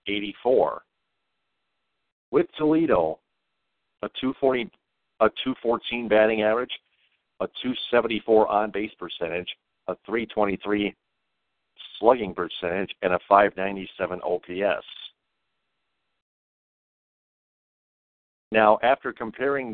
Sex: male